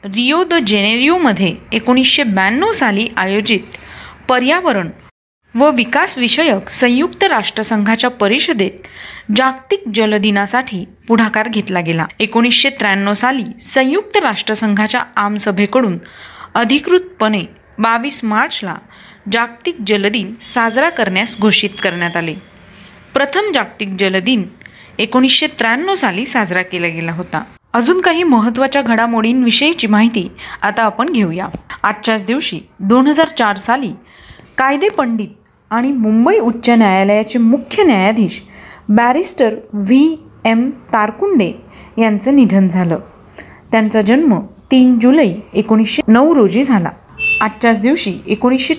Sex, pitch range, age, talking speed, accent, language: female, 210-265 Hz, 30-49, 100 wpm, native, Marathi